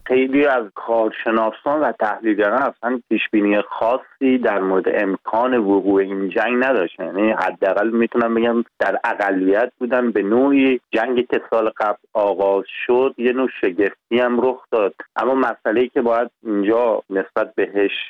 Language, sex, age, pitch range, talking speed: Persian, male, 40-59, 100-125 Hz, 135 wpm